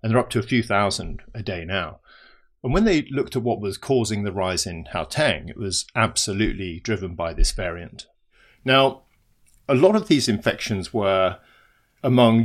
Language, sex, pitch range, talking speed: English, male, 105-125 Hz, 180 wpm